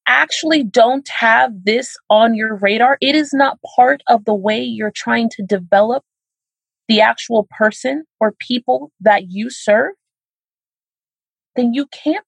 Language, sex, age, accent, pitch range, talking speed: English, female, 30-49, American, 210-275 Hz, 140 wpm